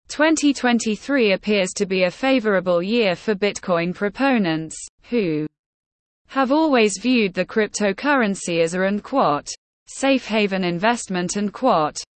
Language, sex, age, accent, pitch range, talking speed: English, female, 20-39, British, 185-250 Hz, 120 wpm